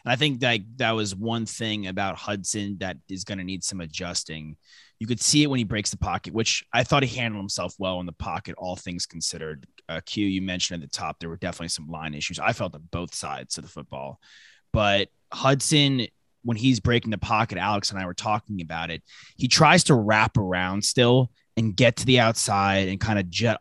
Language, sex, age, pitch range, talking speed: English, male, 20-39, 90-115 Hz, 225 wpm